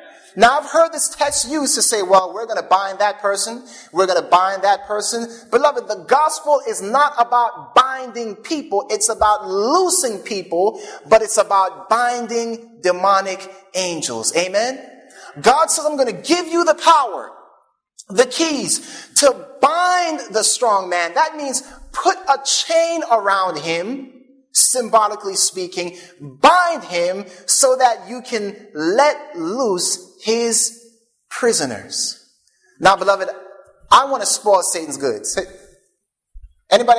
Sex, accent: male, American